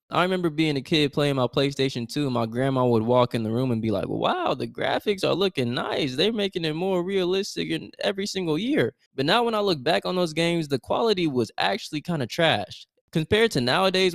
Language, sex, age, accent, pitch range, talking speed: English, male, 20-39, American, 115-160 Hz, 225 wpm